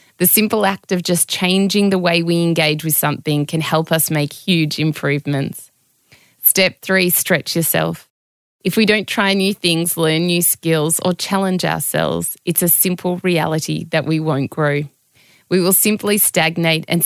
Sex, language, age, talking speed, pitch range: female, English, 20-39, 165 wpm, 155-185 Hz